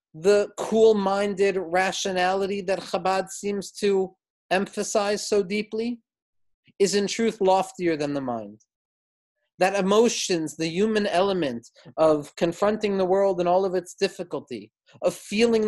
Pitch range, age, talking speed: 175-210 Hz, 40-59, 125 wpm